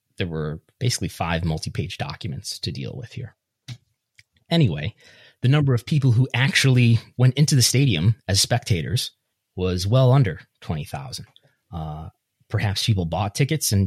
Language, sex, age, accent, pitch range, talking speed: English, male, 30-49, American, 95-125 Hz, 140 wpm